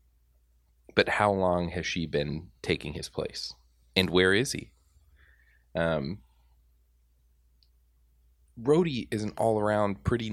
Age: 20-39